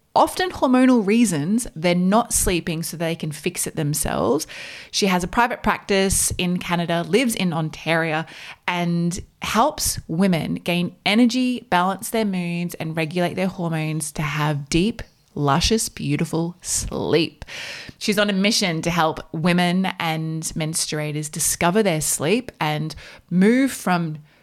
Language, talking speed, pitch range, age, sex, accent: English, 135 wpm, 160-215 Hz, 20-39, female, Australian